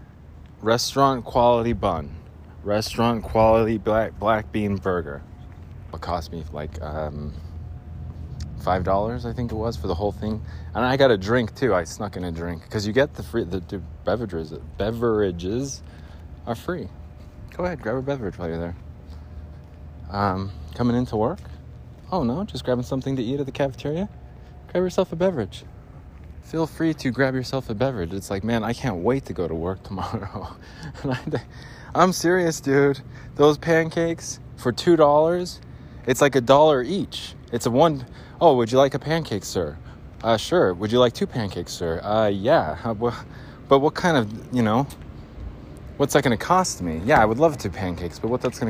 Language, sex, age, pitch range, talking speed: English, male, 20-39, 90-130 Hz, 180 wpm